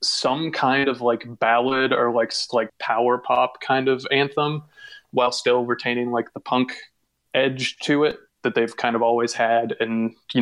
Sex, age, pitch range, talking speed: male, 20-39, 115-125 Hz, 175 wpm